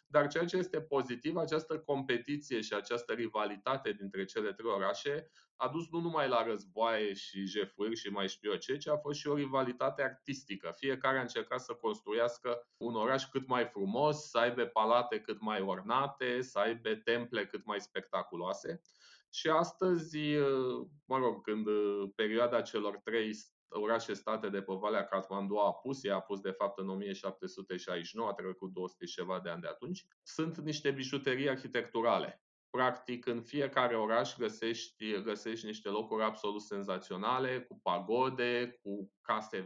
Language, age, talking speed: Romanian, 20-39, 155 wpm